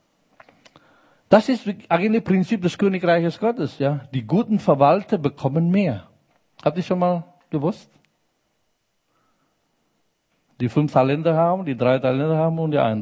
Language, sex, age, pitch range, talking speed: German, male, 50-69, 130-180 Hz, 140 wpm